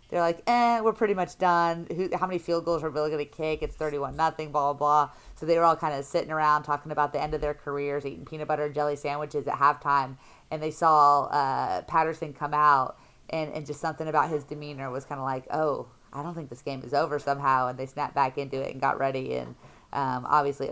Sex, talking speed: female, 245 wpm